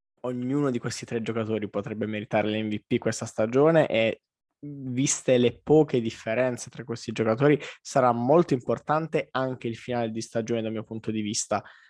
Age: 20-39